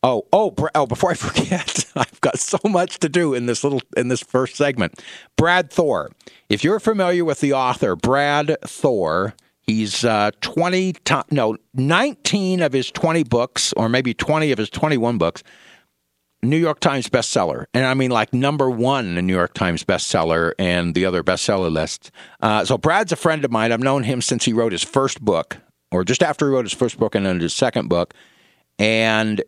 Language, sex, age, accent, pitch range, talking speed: English, male, 50-69, American, 100-145 Hz, 195 wpm